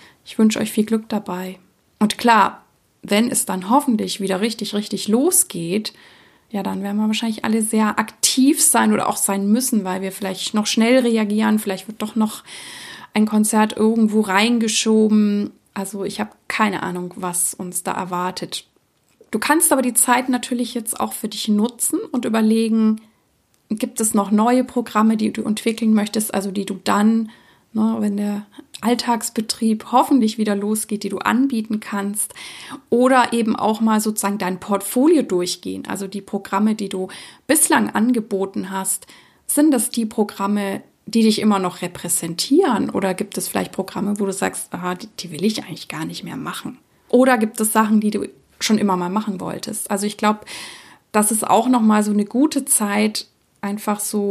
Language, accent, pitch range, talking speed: German, German, 200-230 Hz, 170 wpm